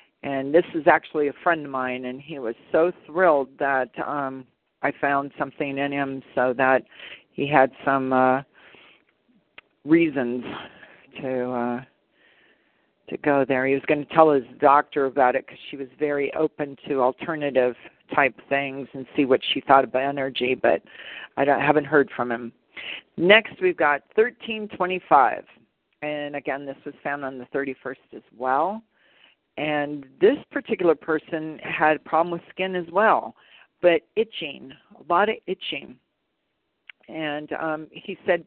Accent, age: American, 40-59